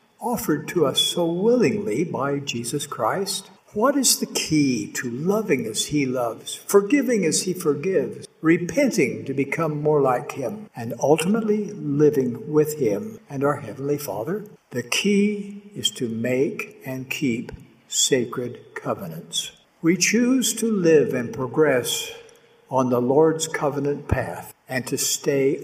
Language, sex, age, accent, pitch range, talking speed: English, male, 60-79, American, 135-200 Hz, 140 wpm